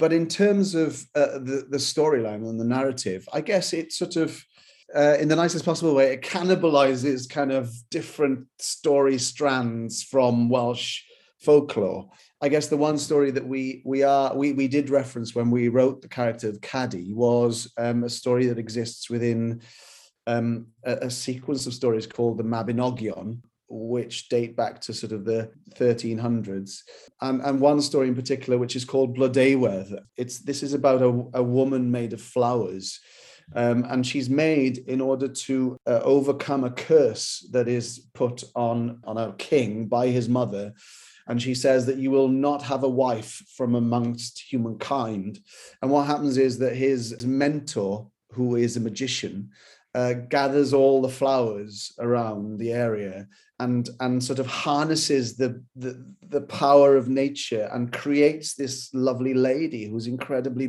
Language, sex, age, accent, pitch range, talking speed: English, male, 40-59, British, 120-140 Hz, 165 wpm